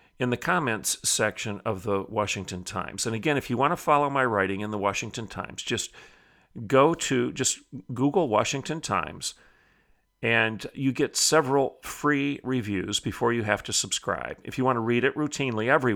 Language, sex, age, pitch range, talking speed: English, male, 50-69, 100-125 Hz, 175 wpm